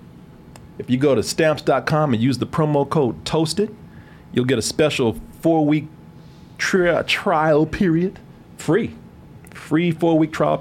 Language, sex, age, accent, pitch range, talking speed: English, male, 40-59, American, 125-155 Hz, 125 wpm